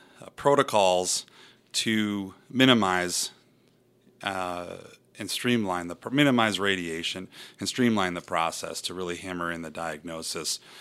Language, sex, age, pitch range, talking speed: English, male, 30-49, 85-100 Hz, 110 wpm